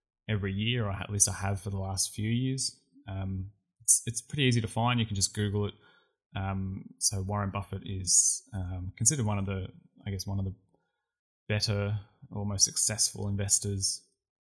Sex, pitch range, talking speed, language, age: male, 95-110 Hz, 185 wpm, English, 20-39